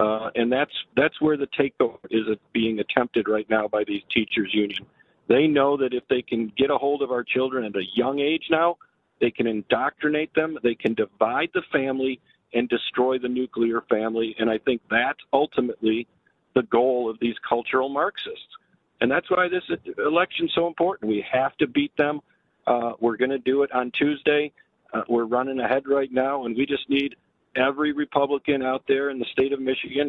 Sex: male